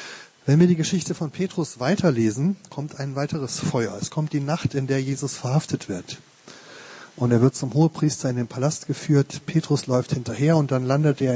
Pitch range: 130-160 Hz